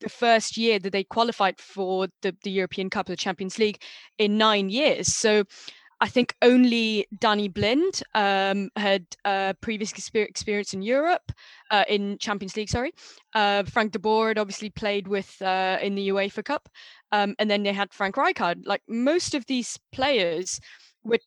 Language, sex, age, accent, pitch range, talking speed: English, female, 20-39, British, 195-245 Hz, 170 wpm